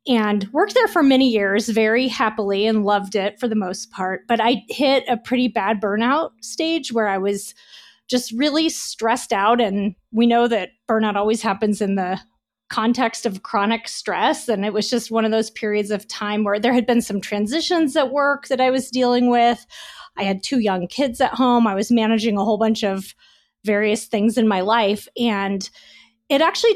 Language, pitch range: English, 205-260 Hz